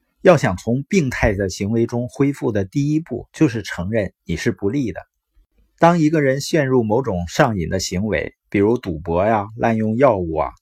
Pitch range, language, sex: 95-145 Hz, Chinese, male